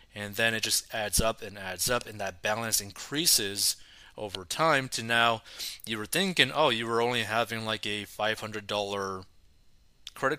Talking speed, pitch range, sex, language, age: 170 wpm, 100-120 Hz, male, English, 30-49